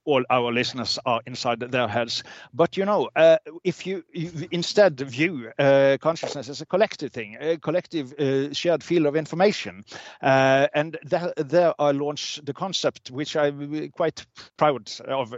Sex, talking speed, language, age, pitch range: male, 165 wpm, English, 60-79, 130-160 Hz